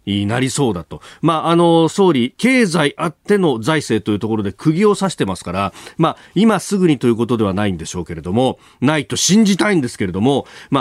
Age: 40-59